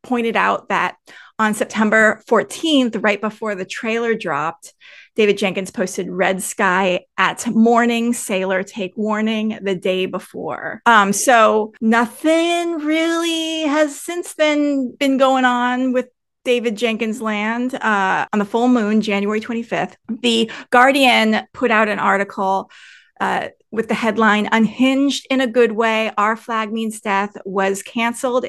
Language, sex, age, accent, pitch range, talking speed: English, female, 30-49, American, 200-240 Hz, 140 wpm